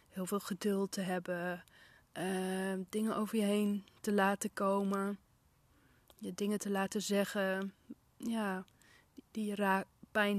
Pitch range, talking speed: 190-215 Hz, 135 wpm